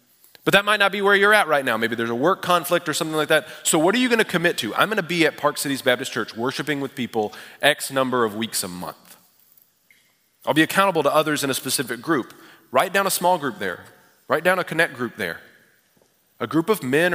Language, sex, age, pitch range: English, male, 30-49, 125-160 Hz